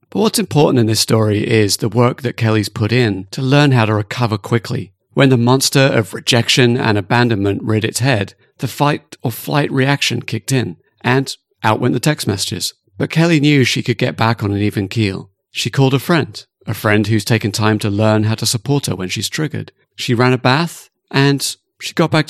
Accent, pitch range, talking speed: British, 110-140 Hz, 205 wpm